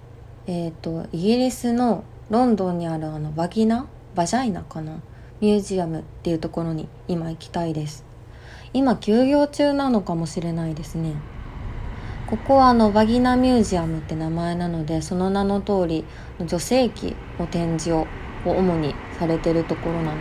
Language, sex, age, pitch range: Japanese, female, 20-39, 155-200 Hz